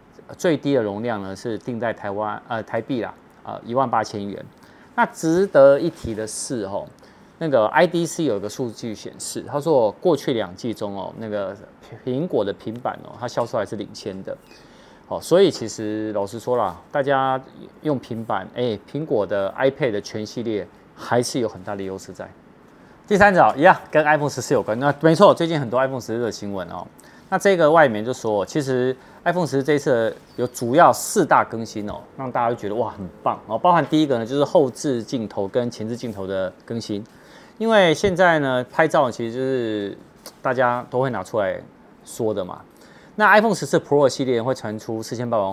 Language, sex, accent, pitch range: Chinese, male, native, 105-145 Hz